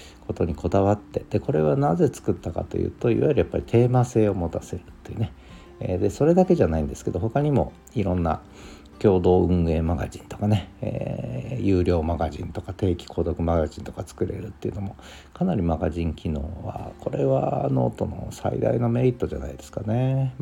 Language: Japanese